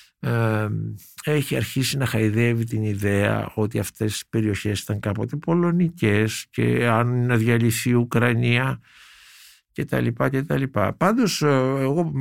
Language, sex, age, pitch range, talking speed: Greek, male, 60-79, 105-145 Hz, 135 wpm